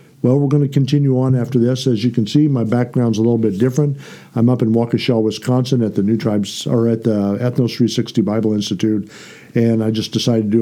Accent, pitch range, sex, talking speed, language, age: American, 110-130 Hz, male, 225 wpm, English, 50-69